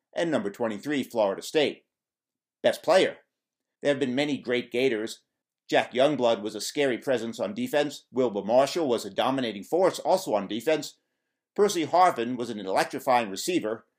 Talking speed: 155 wpm